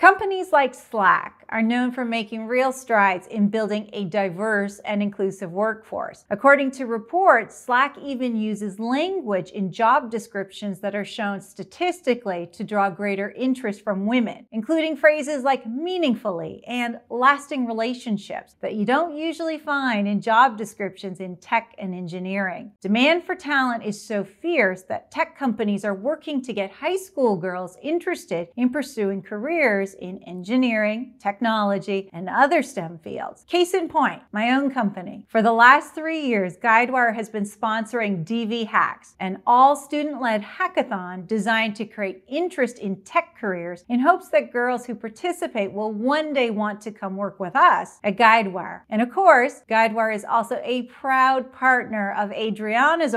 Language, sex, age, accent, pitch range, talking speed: English, female, 40-59, American, 200-265 Hz, 155 wpm